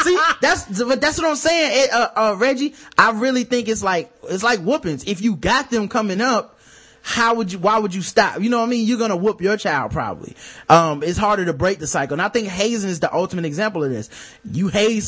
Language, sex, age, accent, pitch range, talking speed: English, male, 20-39, American, 155-220 Hz, 240 wpm